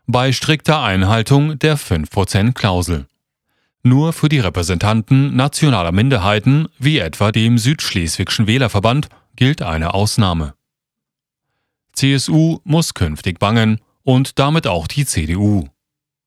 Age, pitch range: 40-59, 100-140 Hz